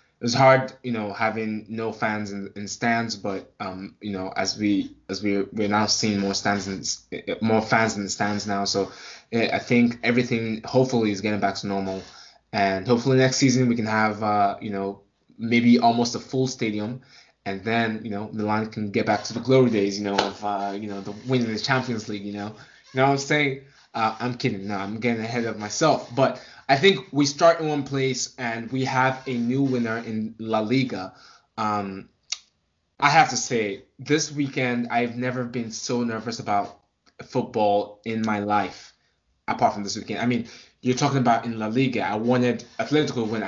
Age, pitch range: 20-39, 105-125 Hz